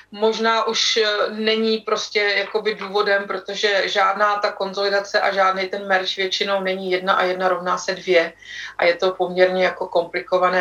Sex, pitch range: female, 185-205 Hz